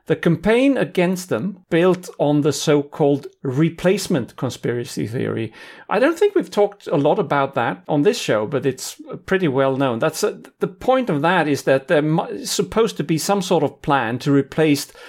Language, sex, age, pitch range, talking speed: English, male, 40-59, 130-185 Hz, 185 wpm